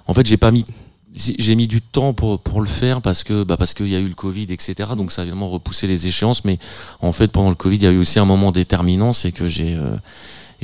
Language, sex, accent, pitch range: French, male, French, 80-95 Hz